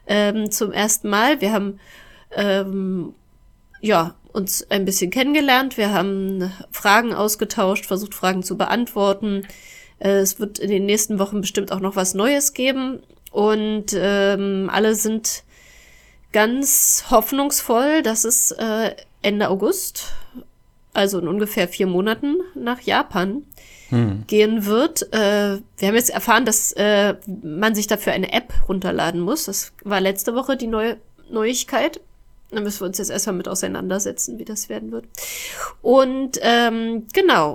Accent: German